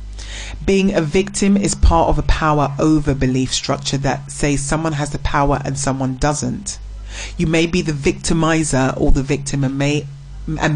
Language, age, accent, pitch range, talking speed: English, 30-49, British, 135-170 Hz, 165 wpm